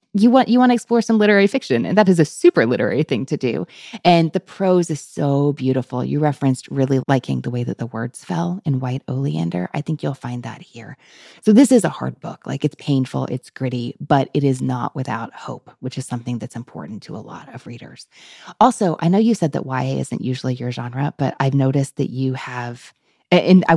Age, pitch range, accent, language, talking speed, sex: 20-39, 130-170 Hz, American, English, 220 wpm, female